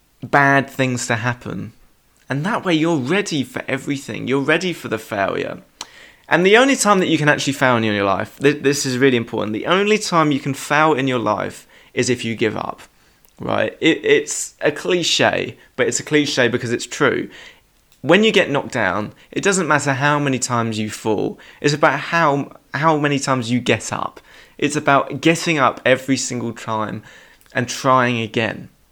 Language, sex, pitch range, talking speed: English, male, 120-160 Hz, 185 wpm